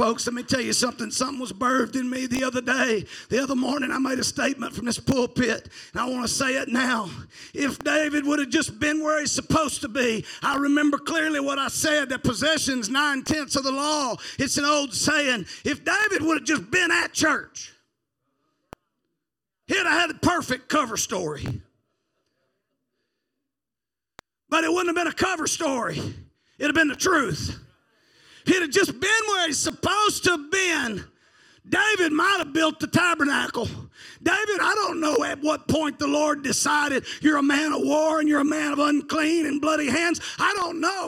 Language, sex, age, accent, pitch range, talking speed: English, male, 40-59, American, 265-320 Hz, 190 wpm